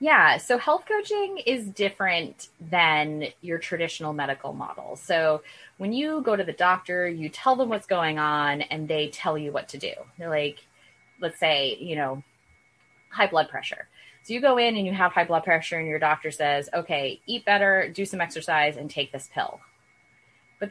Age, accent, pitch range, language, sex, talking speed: 20-39, American, 155-200 Hz, English, female, 190 wpm